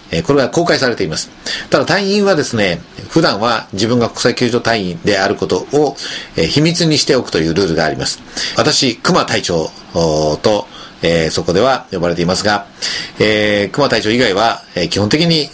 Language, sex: Japanese, male